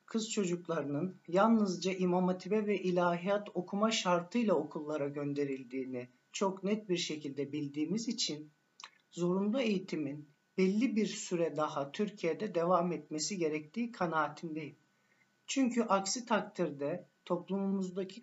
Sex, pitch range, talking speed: male, 160-210 Hz, 105 wpm